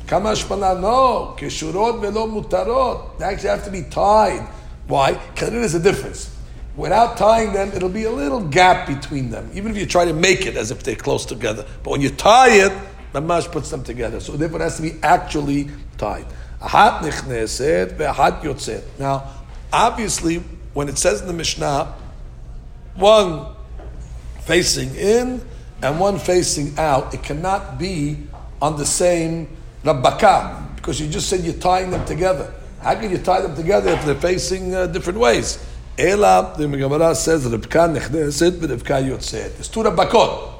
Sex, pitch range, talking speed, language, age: male, 130-185 Hz, 150 wpm, English, 50-69